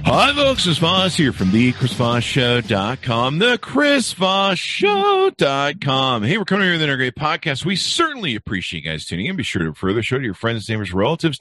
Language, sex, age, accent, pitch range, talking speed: English, male, 50-69, American, 100-145 Hz, 200 wpm